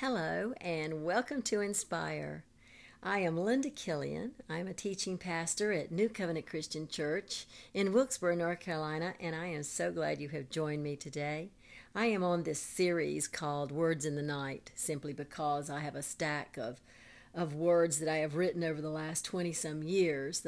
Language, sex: English, female